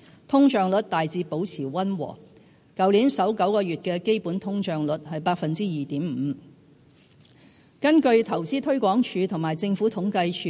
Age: 50-69